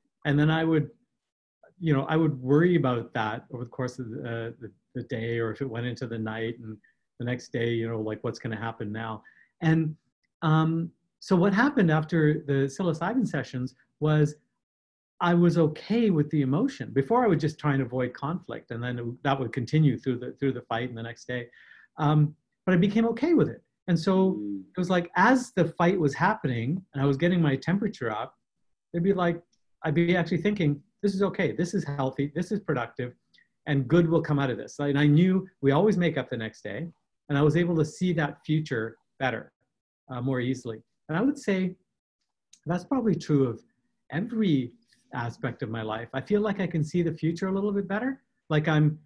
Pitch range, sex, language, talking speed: 125-175 Hz, male, English, 215 wpm